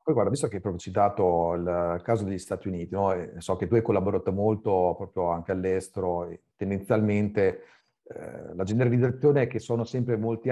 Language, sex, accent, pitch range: Italian, male, native, 95-120 Hz